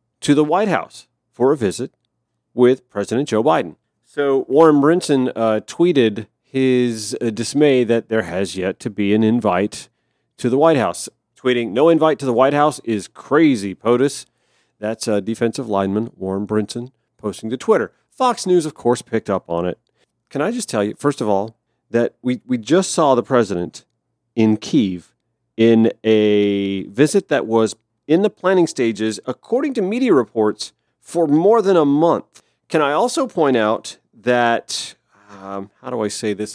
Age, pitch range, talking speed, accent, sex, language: 40-59, 110-160 Hz, 170 wpm, American, male, English